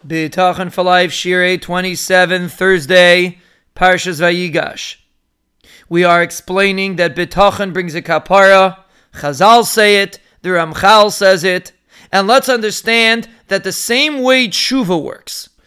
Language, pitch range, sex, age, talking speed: English, 180-230 Hz, male, 30-49, 120 wpm